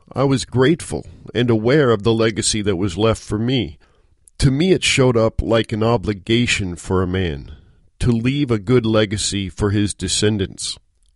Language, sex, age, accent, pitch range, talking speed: English, male, 50-69, American, 100-125 Hz, 170 wpm